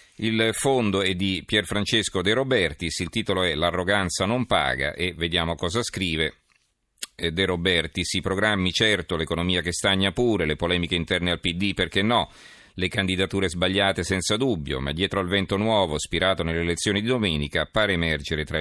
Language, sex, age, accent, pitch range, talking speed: Italian, male, 40-59, native, 80-95 Hz, 165 wpm